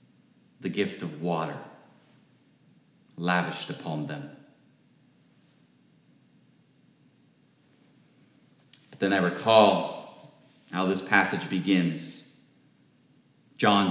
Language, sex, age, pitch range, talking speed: English, male, 40-59, 90-125 Hz, 70 wpm